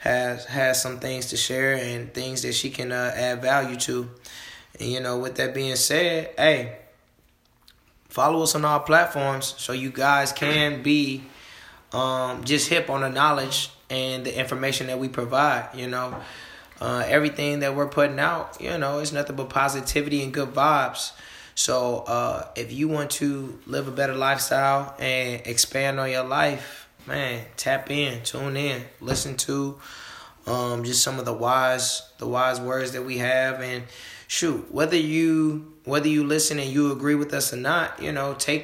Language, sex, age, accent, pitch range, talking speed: English, male, 20-39, American, 125-145 Hz, 175 wpm